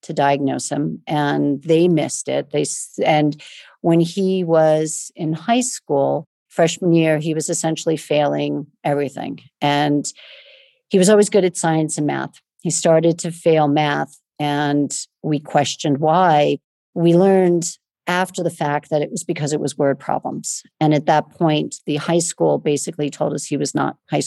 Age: 50-69